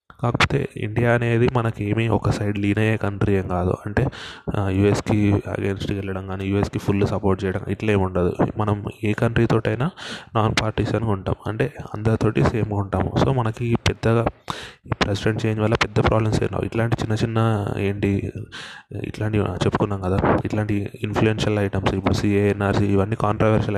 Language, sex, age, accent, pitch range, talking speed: Telugu, male, 20-39, native, 100-110 Hz, 145 wpm